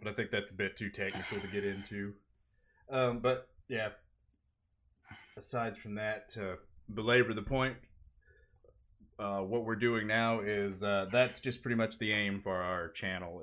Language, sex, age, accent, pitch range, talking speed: English, male, 30-49, American, 95-125 Hz, 170 wpm